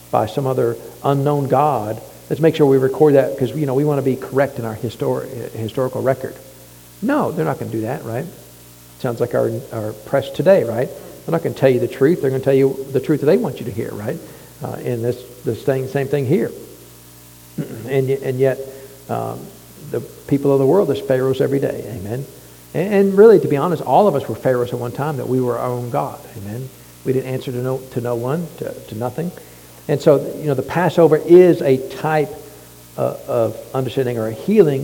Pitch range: 110-140 Hz